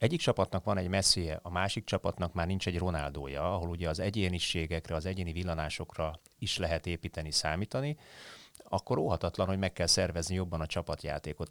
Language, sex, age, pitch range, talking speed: Hungarian, male, 30-49, 80-100 Hz, 165 wpm